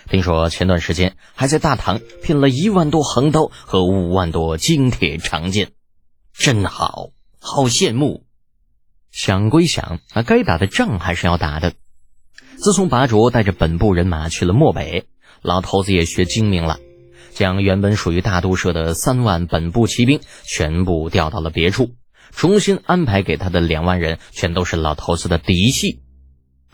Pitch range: 85-135 Hz